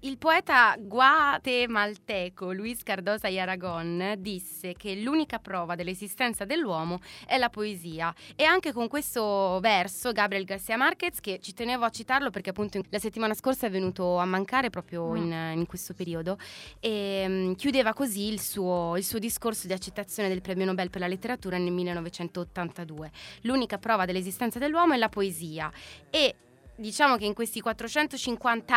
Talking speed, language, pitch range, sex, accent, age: 155 wpm, Italian, 185-230 Hz, female, native, 20-39